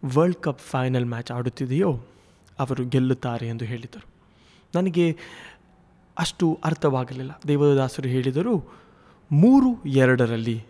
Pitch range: 125-150 Hz